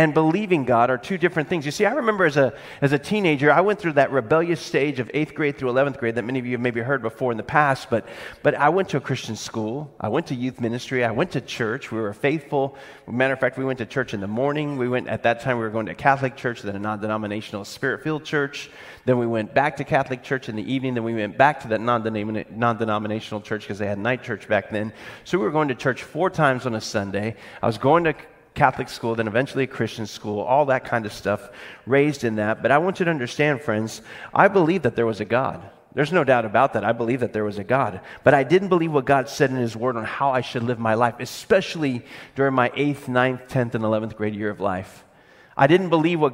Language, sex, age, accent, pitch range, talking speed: English, male, 40-59, American, 115-145 Hz, 260 wpm